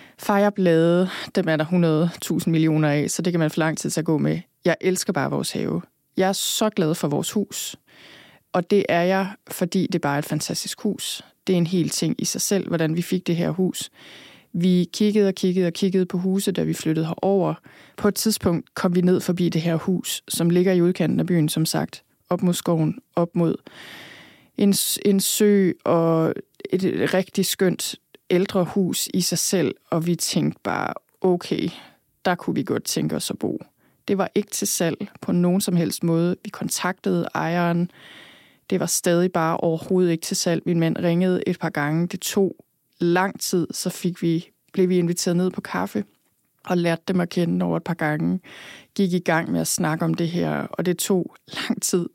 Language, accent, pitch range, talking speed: Danish, native, 165-190 Hz, 205 wpm